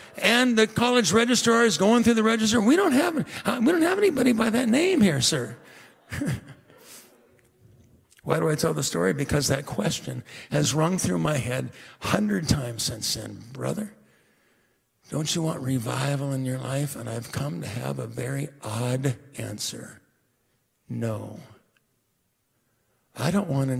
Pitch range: 120-150 Hz